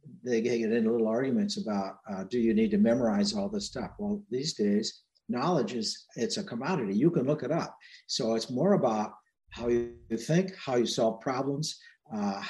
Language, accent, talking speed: English, American, 190 wpm